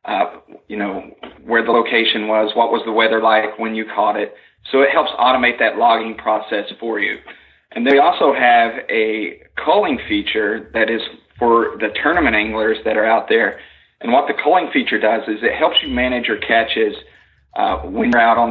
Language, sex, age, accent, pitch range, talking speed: English, male, 40-59, American, 110-130 Hz, 195 wpm